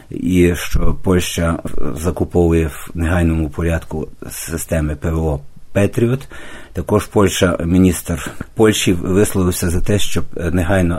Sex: male